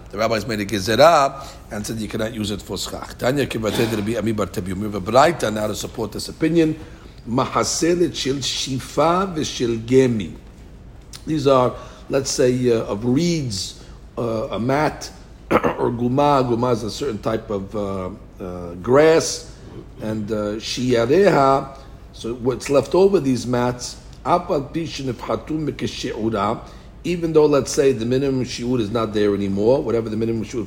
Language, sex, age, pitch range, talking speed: English, male, 60-79, 110-135 Hz, 145 wpm